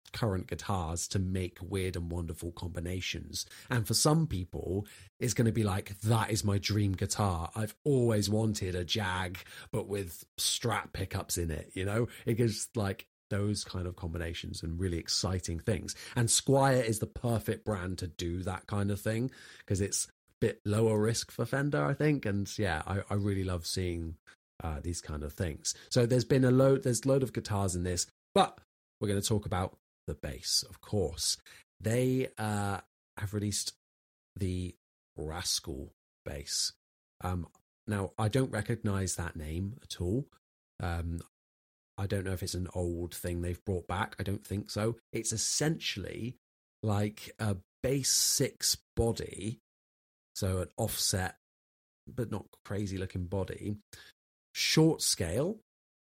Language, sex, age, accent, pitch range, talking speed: English, male, 30-49, British, 90-110 Hz, 160 wpm